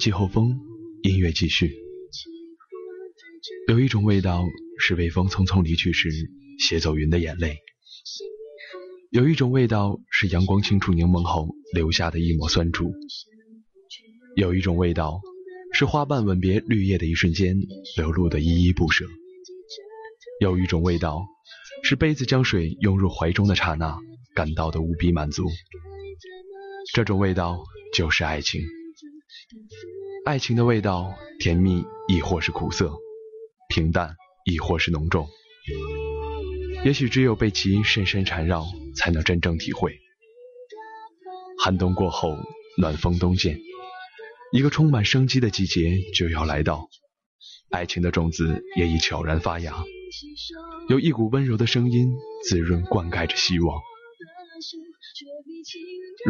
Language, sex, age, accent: Chinese, male, 20-39, native